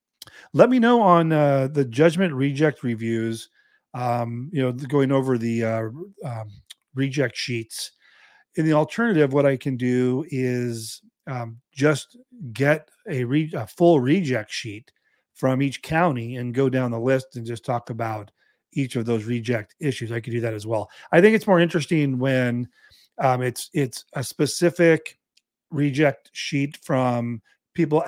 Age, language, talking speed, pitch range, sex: 40-59, English, 155 wpm, 120-155 Hz, male